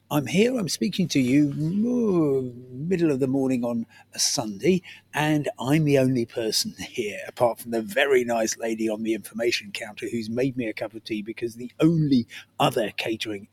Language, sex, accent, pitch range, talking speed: English, male, British, 120-175 Hz, 180 wpm